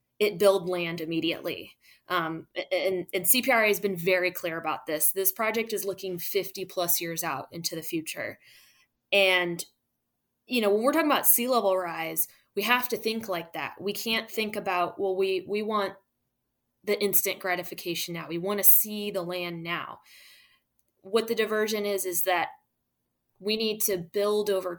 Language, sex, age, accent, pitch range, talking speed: English, female, 20-39, American, 175-210 Hz, 170 wpm